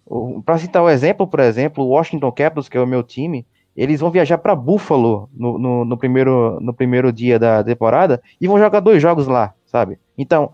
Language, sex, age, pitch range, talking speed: English, male, 20-39, 125-155 Hz, 210 wpm